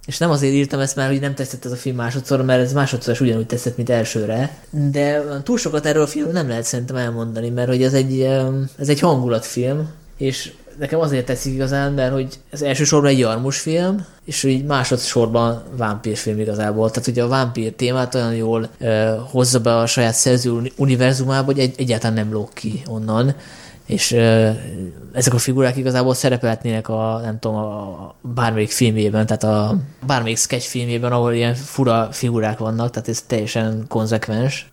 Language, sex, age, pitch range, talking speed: Hungarian, male, 20-39, 115-135 Hz, 175 wpm